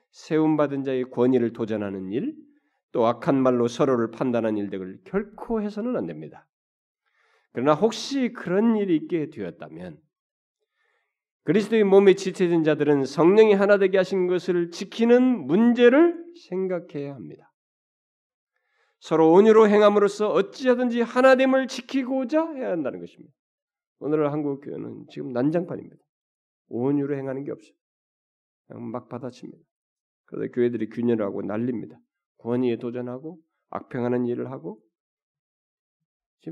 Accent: native